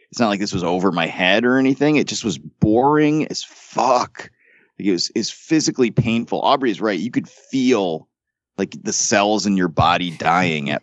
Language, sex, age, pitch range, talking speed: English, male, 30-49, 95-135 Hz, 205 wpm